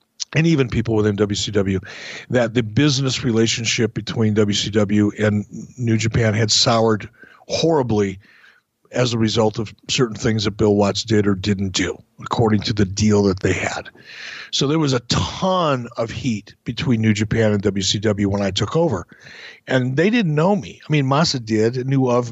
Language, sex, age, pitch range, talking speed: English, male, 50-69, 110-130 Hz, 170 wpm